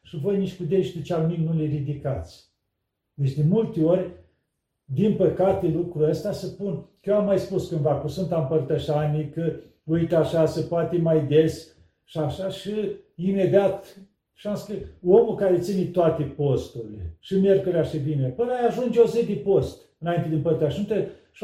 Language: Romanian